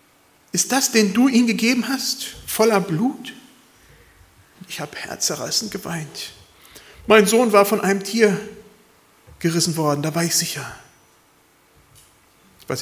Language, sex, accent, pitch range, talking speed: German, male, German, 155-230 Hz, 120 wpm